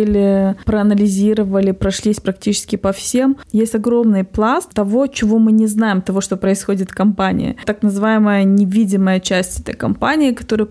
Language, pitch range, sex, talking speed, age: Russian, 195-225 Hz, female, 140 wpm, 20-39